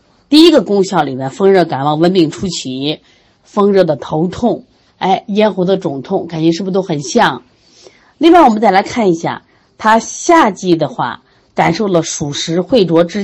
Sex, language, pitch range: female, Chinese, 150-215 Hz